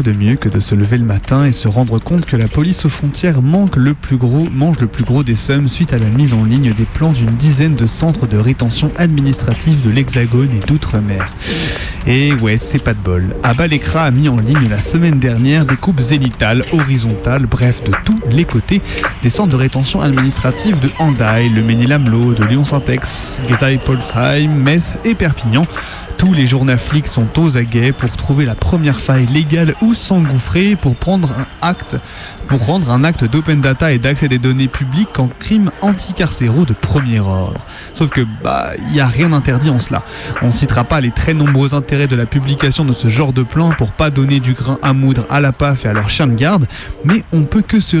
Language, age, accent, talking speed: French, 30-49, French, 210 wpm